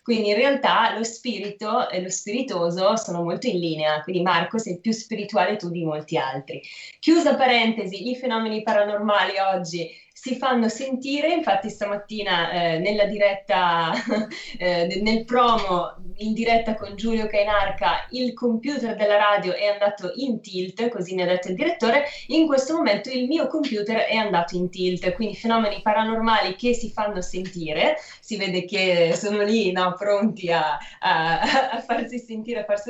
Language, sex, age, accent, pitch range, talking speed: Italian, female, 20-39, native, 185-235 Hz, 160 wpm